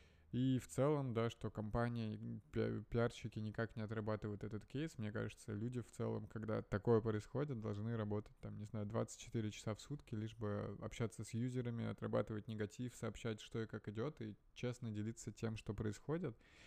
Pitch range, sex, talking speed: 105-120 Hz, male, 170 wpm